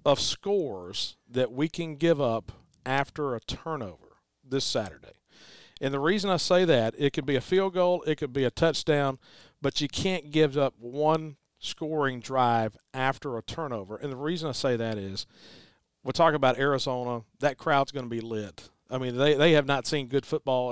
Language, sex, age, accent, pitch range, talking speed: English, male, 40-59, American, 120-150 Hz, 190 wpm